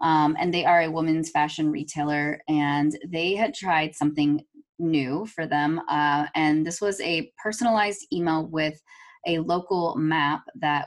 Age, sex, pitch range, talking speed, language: 20-39, female, 150-175 Hz, 155 wpm, English